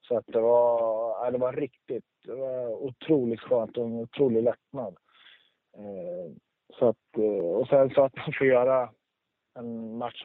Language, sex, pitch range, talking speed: English, male, 110-135 Hz, 150 wpm